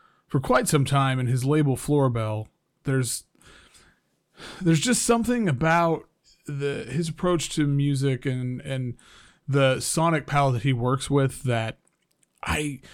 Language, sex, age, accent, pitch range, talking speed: English, male, 30-49, American, 130-160 Hz, 135 wpm